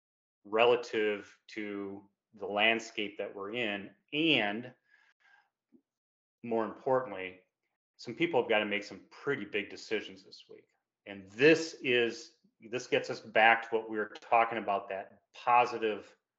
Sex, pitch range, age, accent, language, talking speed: male, 105-145 Hz, 30-49, American, English, 135 wpm